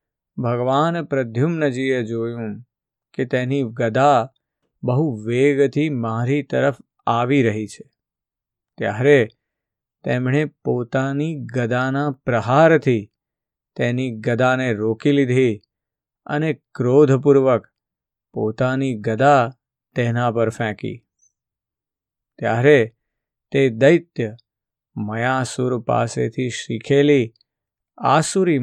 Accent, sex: native, male